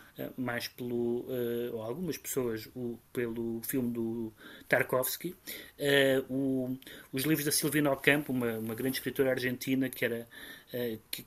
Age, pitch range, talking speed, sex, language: 30-49, 120-135 Hz, 150 wpm, male, Portuguese